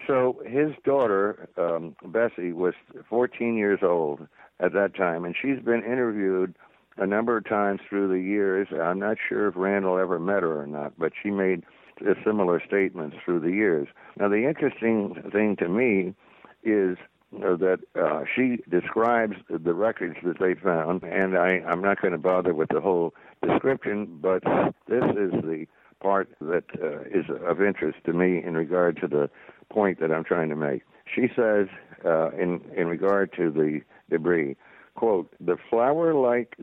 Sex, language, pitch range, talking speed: male, English, 90-110 Hz, 170 wpm